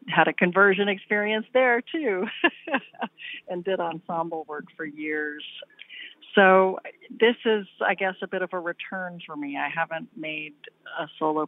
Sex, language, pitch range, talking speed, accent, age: female, English, 150-215 Hz, 150 wpm, American, 50-69